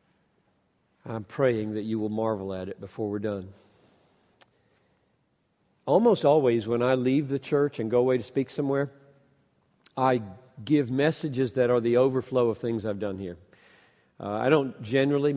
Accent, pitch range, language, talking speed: American, 110-135 Hz, Hindi, 155 wpm